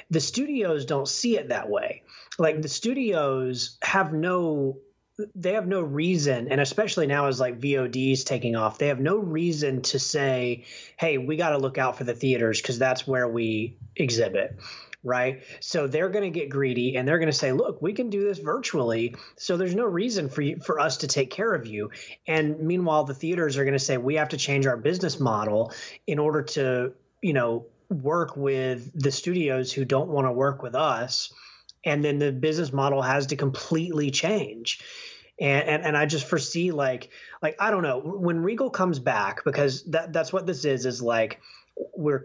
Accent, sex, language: American, male, English